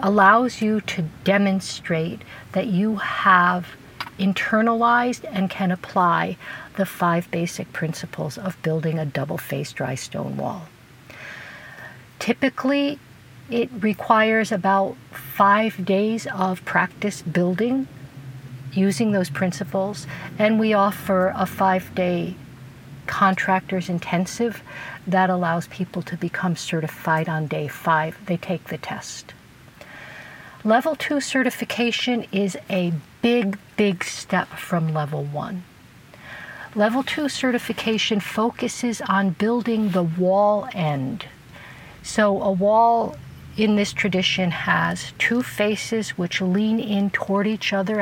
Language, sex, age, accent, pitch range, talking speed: English, female, 50-69, American, 170-215 Hz, 110 wpm